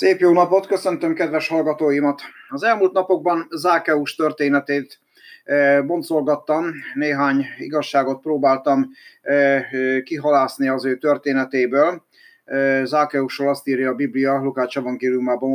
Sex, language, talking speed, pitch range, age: male, Hungarian, 100 wpm, 120-140 Hz, 30-49